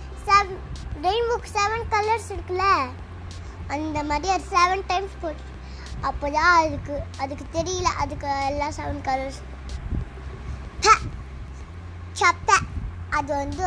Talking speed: 95 wpm